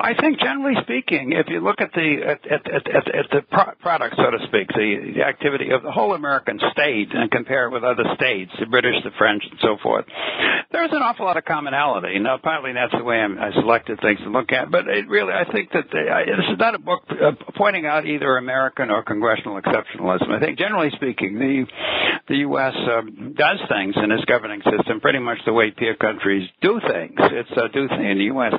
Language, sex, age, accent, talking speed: English, male, 60-79, American, 220 wpm